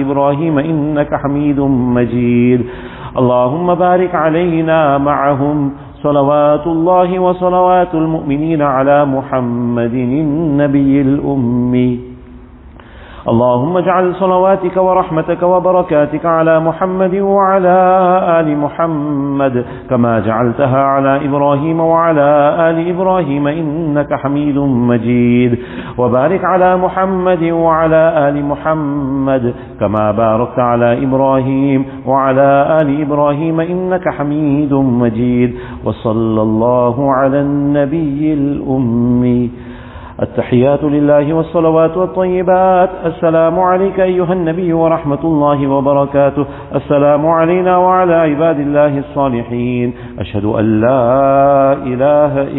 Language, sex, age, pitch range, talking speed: English, male, 50-69, 125-165 Hz, 90 wpm